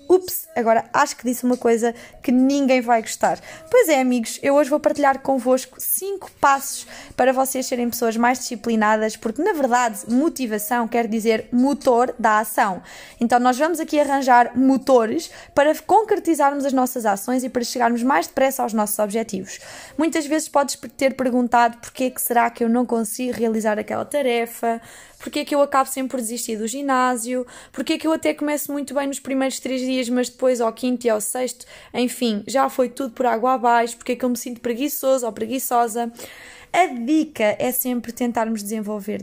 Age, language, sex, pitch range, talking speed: 20-39, Portuguese, female, 235-285 Hz, 180 wpm